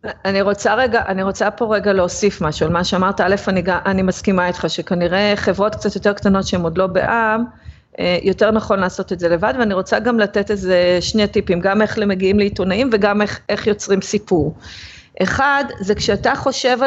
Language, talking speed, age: Hebrew, 185 wpm, 30-49